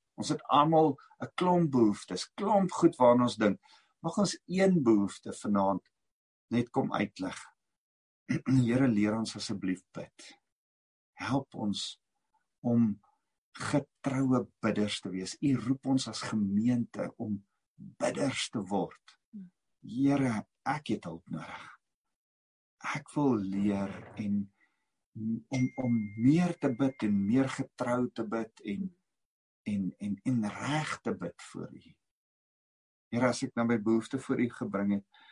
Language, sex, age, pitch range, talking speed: English, male, 50-69, 105-135 Hz, 125 wpm